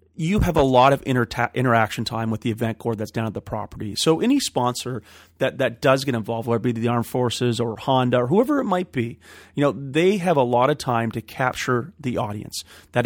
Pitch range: 115-135 Hz